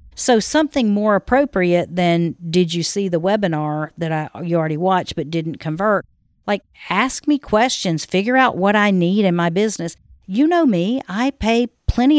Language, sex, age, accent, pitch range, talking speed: English, female, 50-69, American, 160-200 Hz, 175 wpm